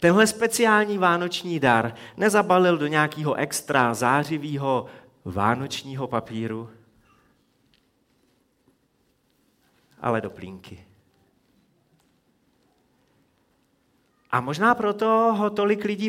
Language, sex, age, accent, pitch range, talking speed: Czech, male, 40-59, native, 140-205 Hz, 75 wpm